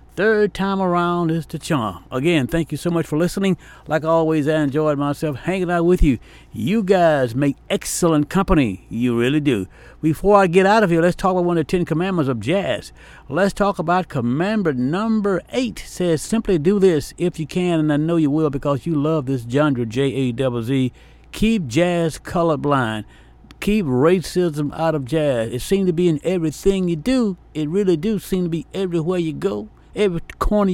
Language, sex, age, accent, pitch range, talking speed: English, male, 60-79, American, 140-180 Hz, 190 wpm